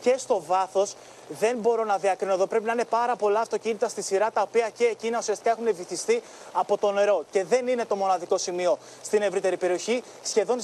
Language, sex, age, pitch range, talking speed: Greek, male, 30-49, 200-240 Hz, 205 wpm